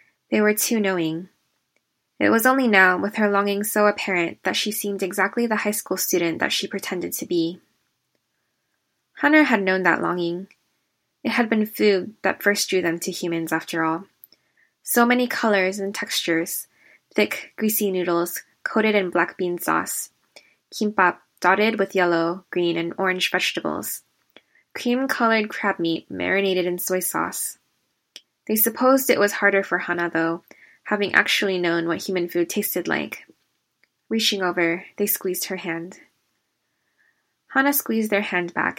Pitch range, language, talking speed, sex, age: 175-215 Hz, English, 150 wpm, female, 10-29